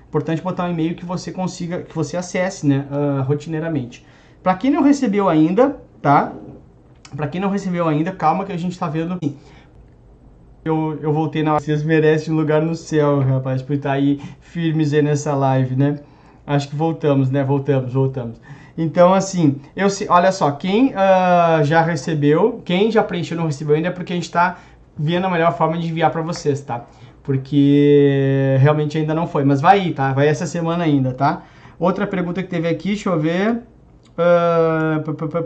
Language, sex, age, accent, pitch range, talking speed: Portuguese, male, 20-39, Brazilian, 145-175 Hz, 190 wpm